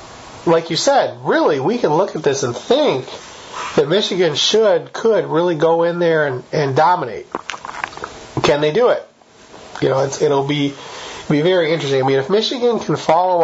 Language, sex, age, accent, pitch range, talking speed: English, male, 40-59, American, 140-200 Hz, 180 wpm